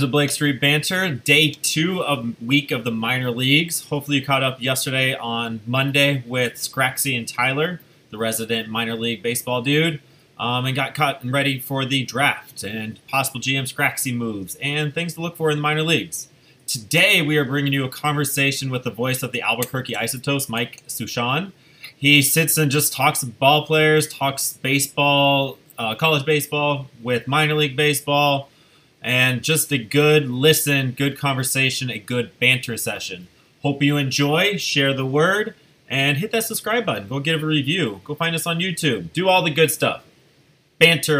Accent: American